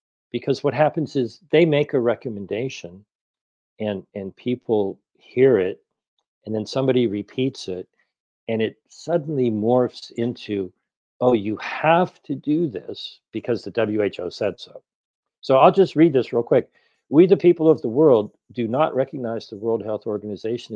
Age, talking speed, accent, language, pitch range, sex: 50-69, 155 wpm, American, English, 105-140 Hz, male